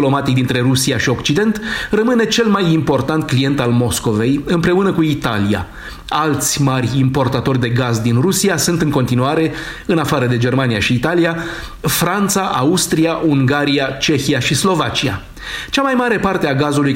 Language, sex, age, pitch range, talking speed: Romanian, male, 40-59, 130-170 Hz, 150 wpm